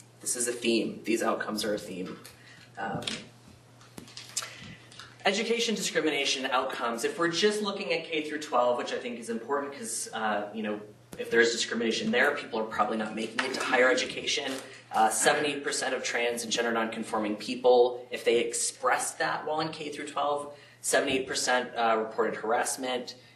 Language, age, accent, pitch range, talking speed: English, 30-49, American, 110-150 Hz, 165 wpm